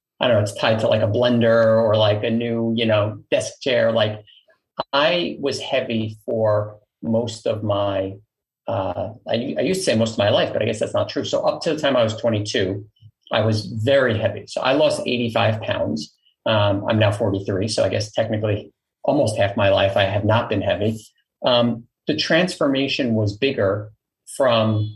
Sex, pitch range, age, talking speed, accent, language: male, 105-125 Hz, 30-49, 195 wpm, American, English